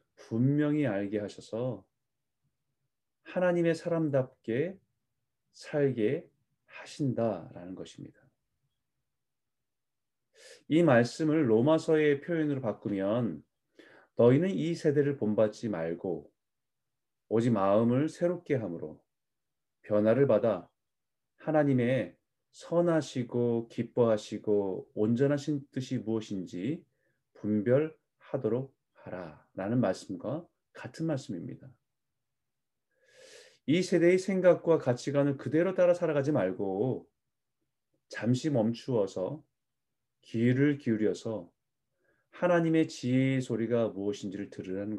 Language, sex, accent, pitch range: Korean, male, native, 115-155 Hz